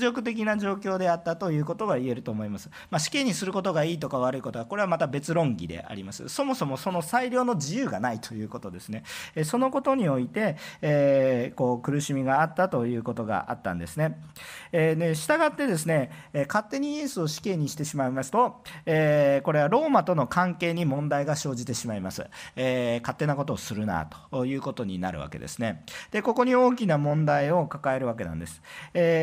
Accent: native